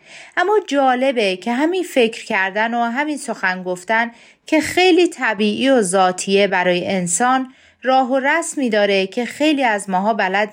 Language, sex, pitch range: Persian, female, 195-275 Hz